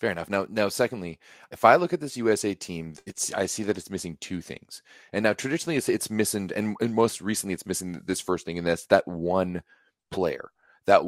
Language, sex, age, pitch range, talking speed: English, male, 30-49, 90-105 Hz, 220 wpm